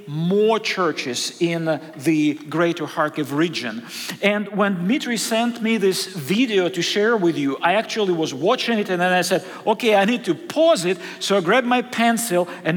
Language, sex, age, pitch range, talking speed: English, male, 40-59, 185-245 Hz, 185 wpm